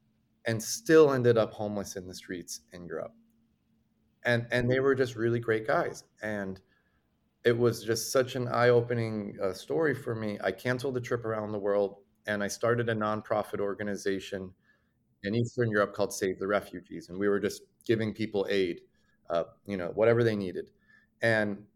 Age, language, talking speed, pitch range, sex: 30-49, English, 175 wpm, 110-130 Hz, male